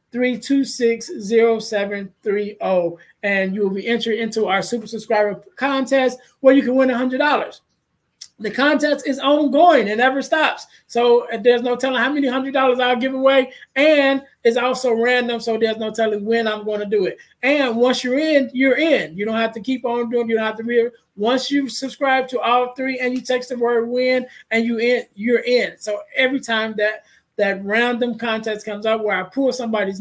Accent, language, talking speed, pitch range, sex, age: American, English, 210 wpm, 205-255 Hz, male, 20-39